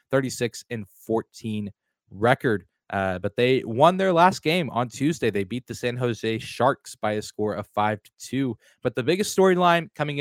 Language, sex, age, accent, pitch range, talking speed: English, male, 20-39, American, 115-145 Hz, 180 wpm